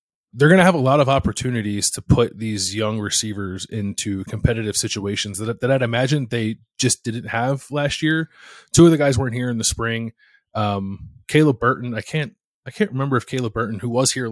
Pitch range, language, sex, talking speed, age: 105-125 Hz, English, male, 205 wpm, 20-39